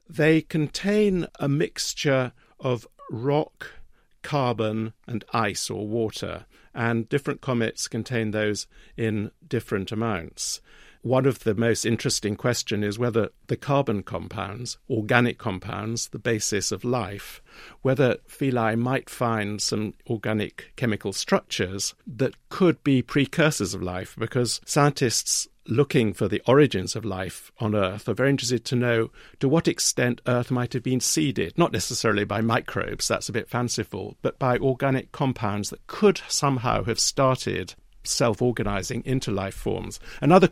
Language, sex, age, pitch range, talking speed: English, male, 50-69, 110-135 Hz, 140 wpm